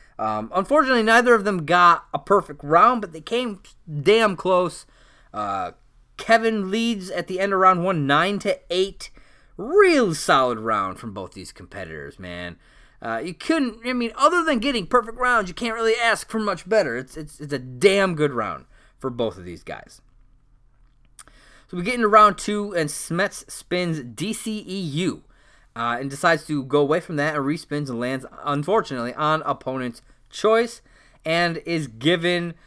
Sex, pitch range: male, 135-205 Hz